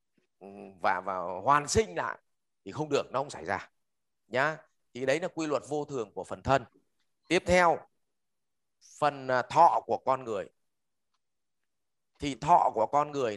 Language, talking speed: English, 155 wpm